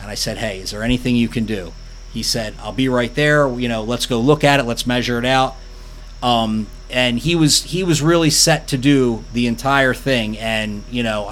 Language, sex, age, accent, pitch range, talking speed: English, male, 30-49, American, 115-135 Hz, 230 wpm